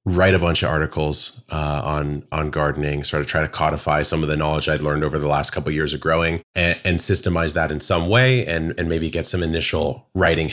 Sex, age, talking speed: male, 30-49, 240 wpm